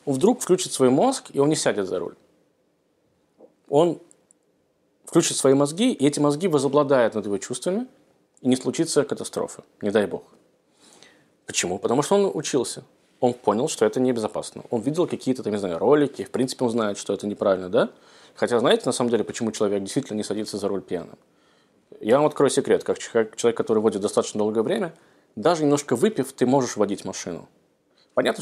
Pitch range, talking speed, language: 105-145 Hz, 180 wpm, Russian